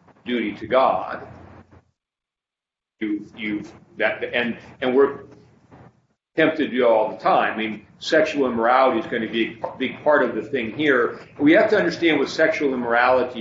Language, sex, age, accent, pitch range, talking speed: English, male, 50-69, American, 115-145 Hz, 165 wpm